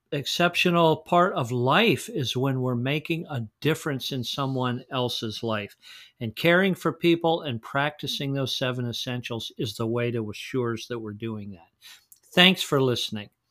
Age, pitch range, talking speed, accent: 50-69, 115-140 Hz, 155 wpm, American